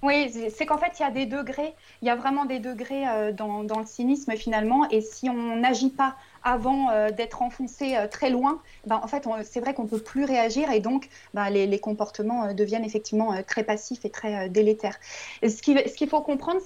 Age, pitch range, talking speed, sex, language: 30-49, 220-270 Hz, 240 wpm, female, French